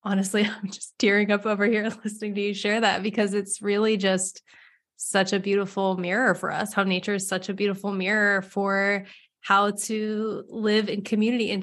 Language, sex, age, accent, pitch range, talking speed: English, female, 20-39, American, 190-220 Hz, 185 wpm